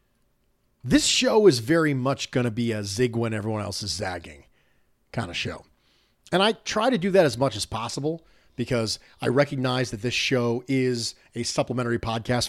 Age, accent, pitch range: 40-59, American, 115-150 Hz